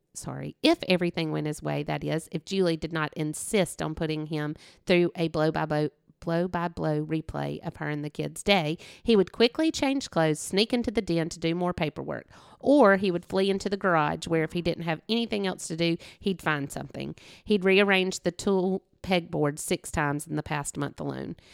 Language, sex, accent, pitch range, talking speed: English, female, American, 155-195 Hz, 195 wpm